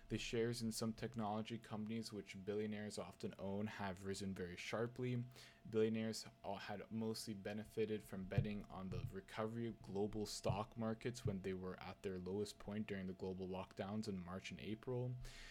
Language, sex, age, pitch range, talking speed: English, male, 20-39, 100-115 Hz, 165 wpm